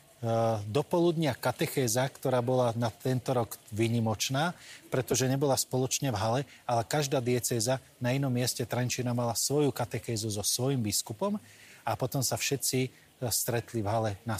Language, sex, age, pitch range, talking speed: Slovak, male, 30-49, 110-135 Hz, 145 wpm